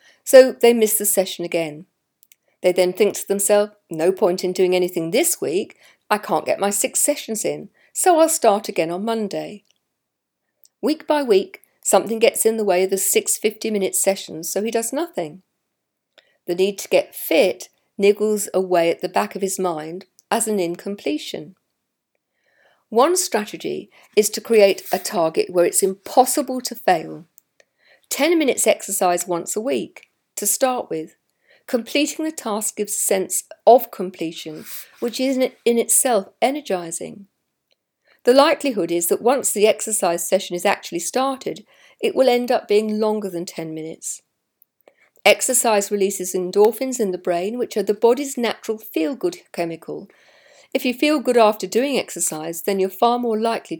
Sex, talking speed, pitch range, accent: female, 160 wpm, 185-255 Hz, British